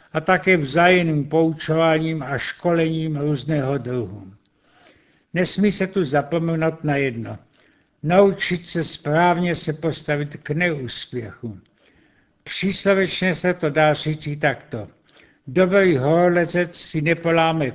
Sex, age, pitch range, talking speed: male, 60-79, 145-175 Hz, 105 wpm